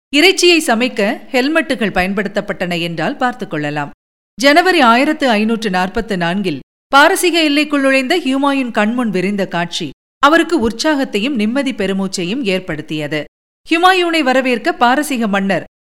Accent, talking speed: native, 105 wpm